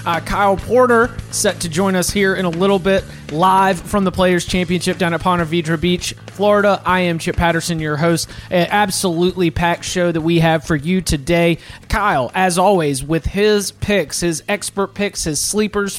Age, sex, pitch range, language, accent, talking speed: 30-49, male, 165-205 Hz, English, American, 185 wpm